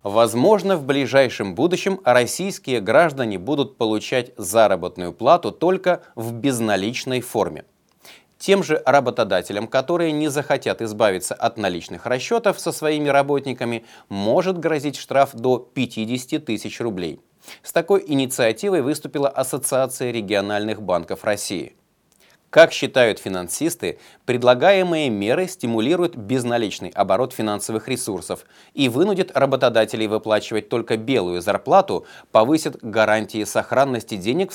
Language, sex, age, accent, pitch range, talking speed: Russian, male, 30-49, native, 110-150 Hz, 110 wpm